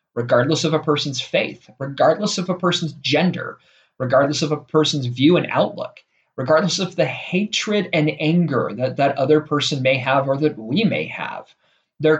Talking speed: 170 wpm